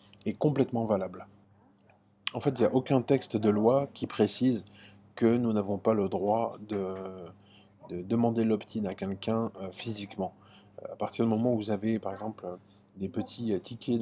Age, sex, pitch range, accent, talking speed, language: 20-39, male, 100-115 Hz, French, 170 wpm, French